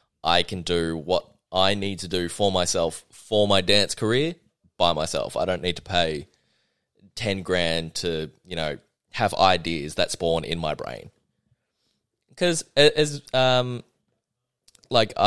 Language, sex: English, male